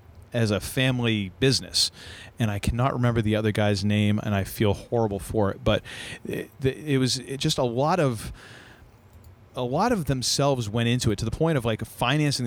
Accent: American